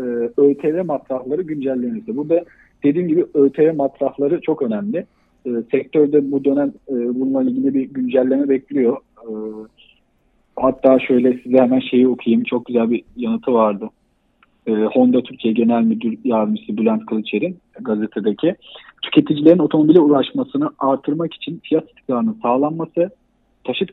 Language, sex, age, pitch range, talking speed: Turkish, male, 40-59, 115-165 Hz, 130 wpm